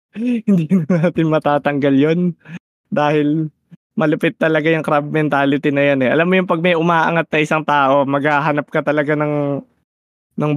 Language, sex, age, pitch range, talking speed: Filipino, male, 20-39, 140-170 Hz, 155 wpm